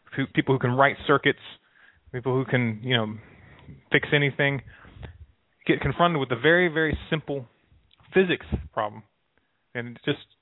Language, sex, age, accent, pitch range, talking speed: English, male, 30-49, American, 125-150 Hz, 140 wpm